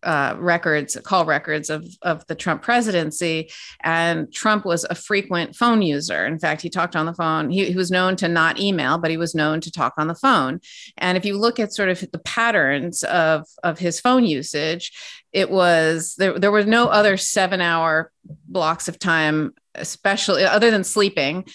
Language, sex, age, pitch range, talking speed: English, female, 30-49, 160-190 Hz, 190 wpm